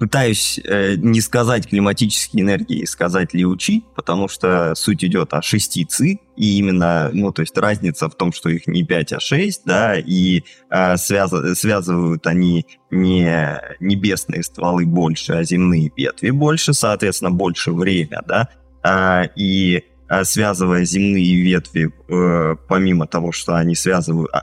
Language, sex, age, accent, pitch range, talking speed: Russian, male, 20-39, native, 85-100 Hz, 140 wpm